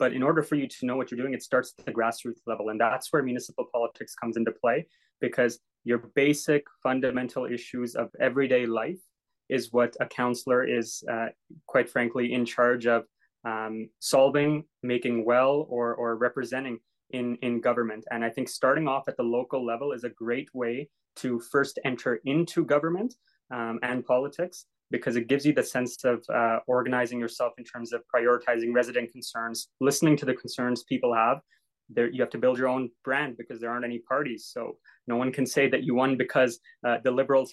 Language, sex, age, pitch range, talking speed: English, male, 20-39, 120-130 Hz, 195 wpm